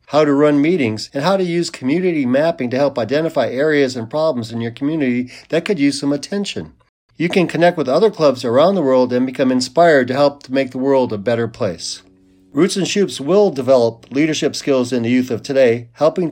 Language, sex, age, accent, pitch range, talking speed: English, male, 50-69, American, 125-160 Hz, 215 wpm